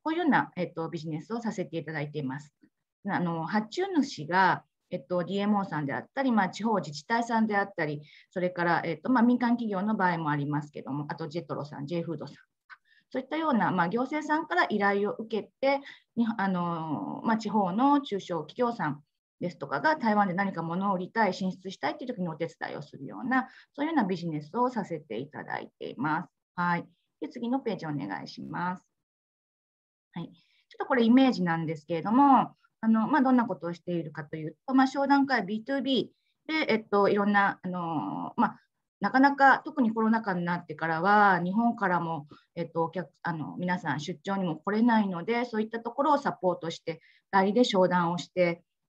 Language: Japanese